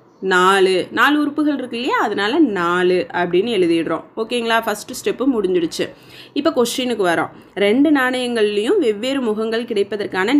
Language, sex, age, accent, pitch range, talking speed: Tamil, female, 20-39, native, 210-310 Hz, 120 wpm